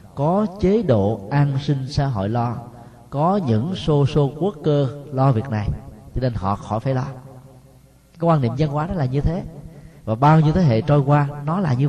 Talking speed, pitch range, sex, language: 210 wpm, 105-140 Hz, male, Vietnamese